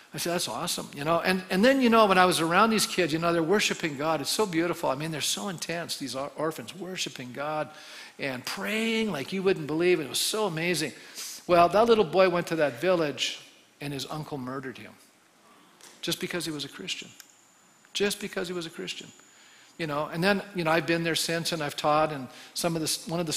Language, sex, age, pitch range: English, male, 50-69, 150-190 Hz